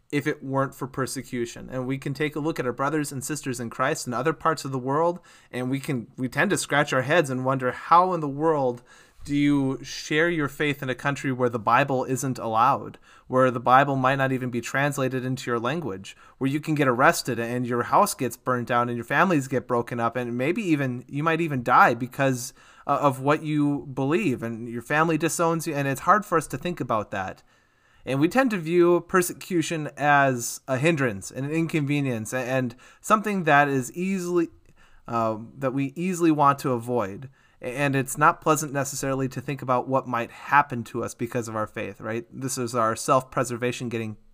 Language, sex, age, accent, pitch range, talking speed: English, male, 30-49, American, 125-160 Hz, 205 wpm